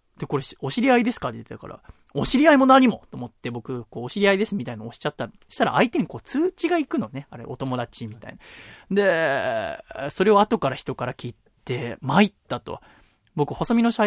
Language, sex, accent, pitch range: Japanese, male, native, 120-205 Hz